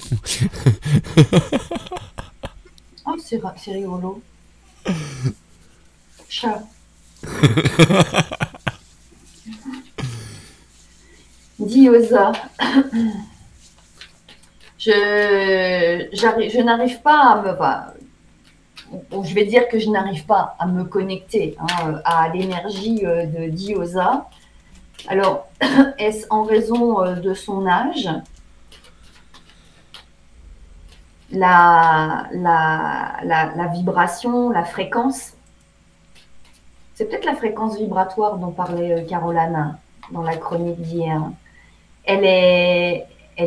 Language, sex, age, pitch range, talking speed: French, female, 40-59, 150-205 Hz, 75 wpm